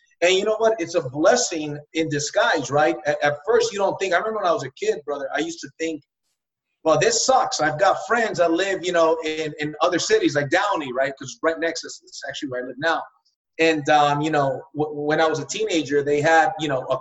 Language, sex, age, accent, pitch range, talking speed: English, male, 30-49, American, 150-190 Hz, 245 wpm